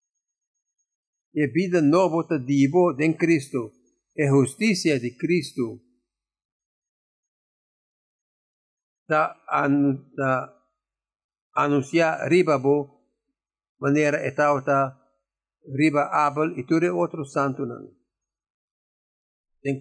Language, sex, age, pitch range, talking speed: English, male, 50-69, 135-170 Hz, 75 wpm